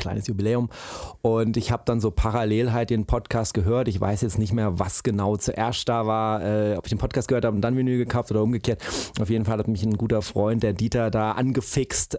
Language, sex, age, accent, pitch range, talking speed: German, male, 30-49, German, 105-120 Hz, 230 wpm